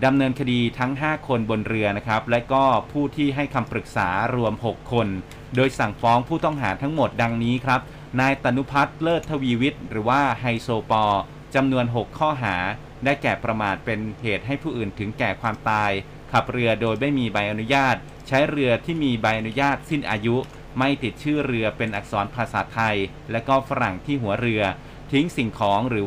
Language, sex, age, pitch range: Thai, male, 30-49, 110-140 Hz